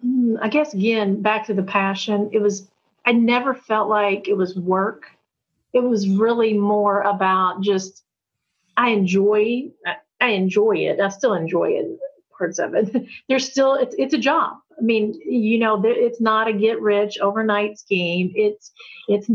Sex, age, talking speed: female, 40-59, 165 wpm